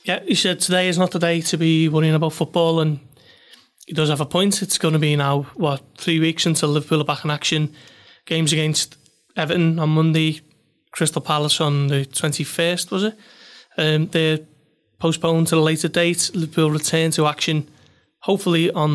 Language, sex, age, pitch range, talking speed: English, male, 30-49, 150-175 Hz, 185 wpm